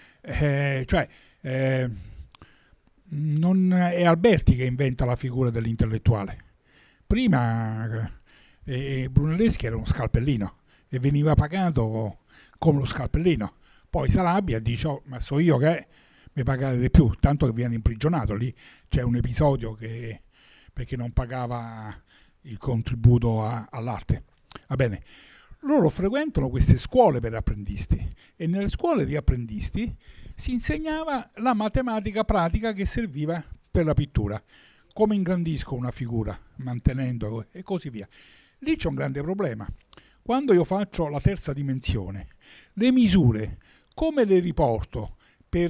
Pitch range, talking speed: 115-175 Hz, 130 wpm